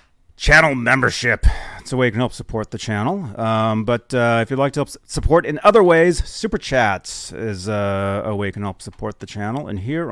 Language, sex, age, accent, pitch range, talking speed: English, male, 30-49, American, 105-160 Hz, 220 wpm